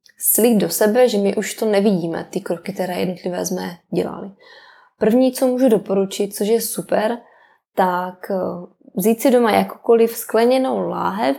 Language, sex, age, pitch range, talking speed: Czech, female, 20-39, 200-235 Hz, 150 wpm